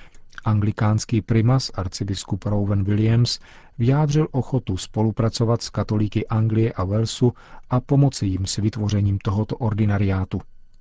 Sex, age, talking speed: male, 40-59, 110 wpm